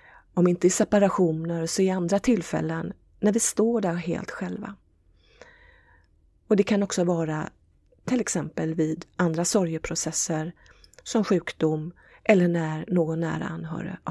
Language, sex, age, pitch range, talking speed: Swedish, female, 40-59, 160-195 Hz, 130 wpm